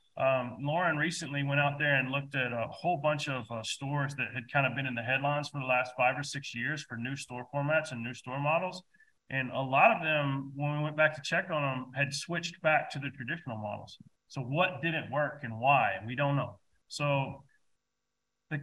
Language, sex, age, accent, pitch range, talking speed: English, male, 30-49, American, 125-155 Hz, 220 wpm